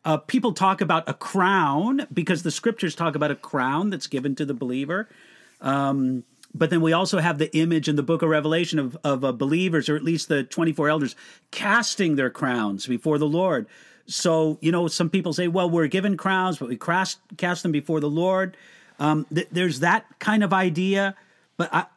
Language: English